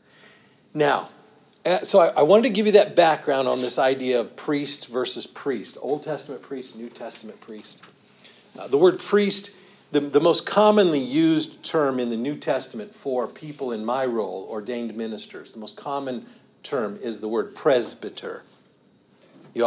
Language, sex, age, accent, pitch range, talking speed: English, male, 50-69, American, 120-155 Hz, 160 wpm